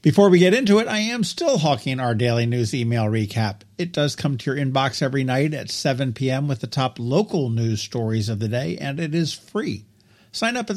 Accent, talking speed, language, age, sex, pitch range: American, 230 wpm, English, 50-69, male, 125-180 Hz